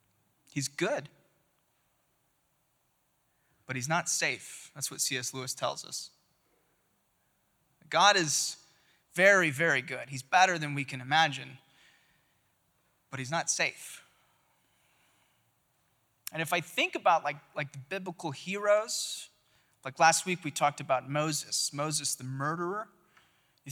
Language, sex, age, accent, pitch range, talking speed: English, male, 20-39, American, 145-175 Hz, 120 wpm